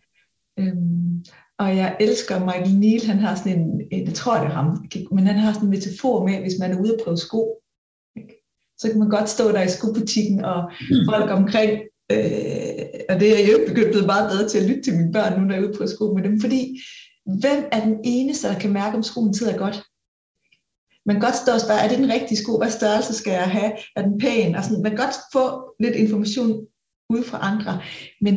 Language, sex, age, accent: Danish, female, 30-49, native